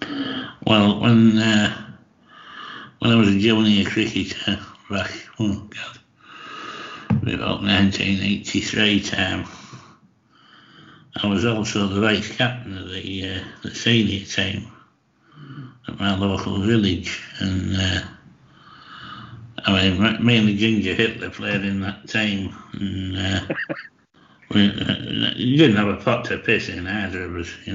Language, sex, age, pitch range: English, male, 60-79, 95-115 Hz